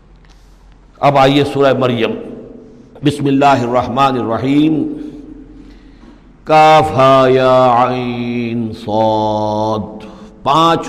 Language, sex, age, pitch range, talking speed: Urdu, male, 60-79, 115-150 Hz, 65 wpm